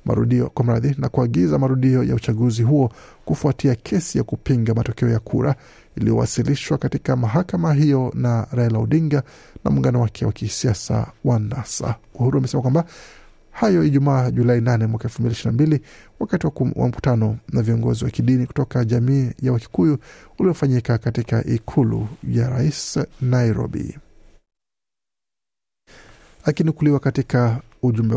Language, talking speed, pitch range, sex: Swahili, 120 wpm, 115-140 Hz, male